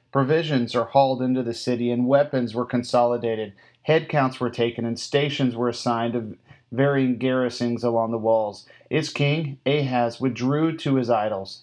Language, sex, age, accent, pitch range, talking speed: English, male, 40-59, American, 120-135 Hz, 155 wpm